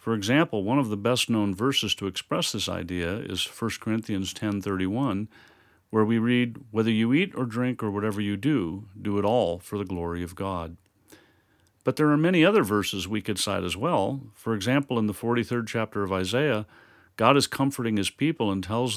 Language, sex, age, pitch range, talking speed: English, male, 50-69, 100-120 Hz, 195 wpm